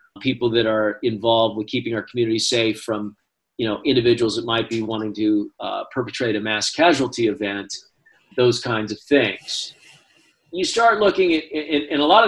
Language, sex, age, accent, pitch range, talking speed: English, male, 40-59, American, 115-135 Hz, 175 wpm